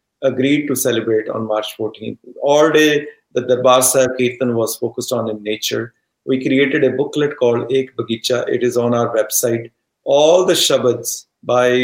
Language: Punjabi